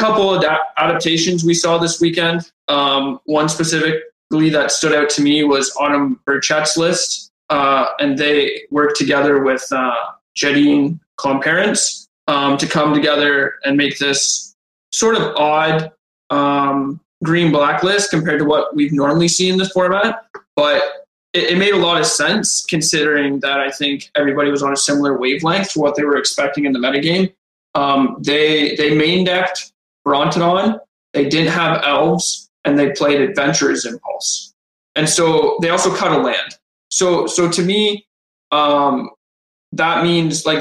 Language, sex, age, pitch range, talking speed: English, male, 20-39, 145-180 Hz, 155 wpm